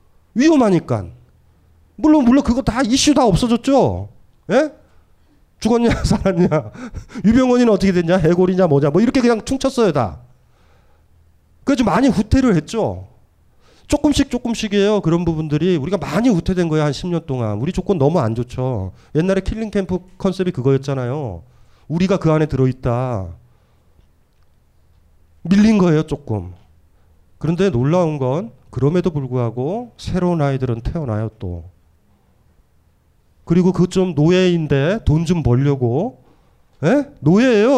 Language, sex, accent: Korean, male, native